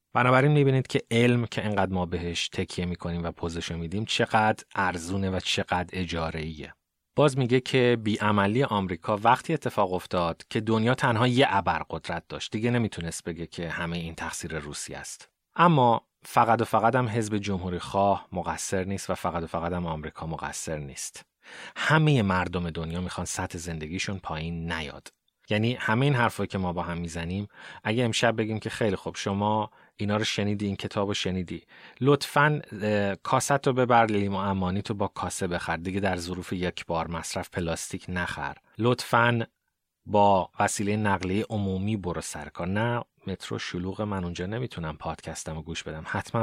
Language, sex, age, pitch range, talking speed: Persian, male, 30-49, 85-110 Hz, 160 wpm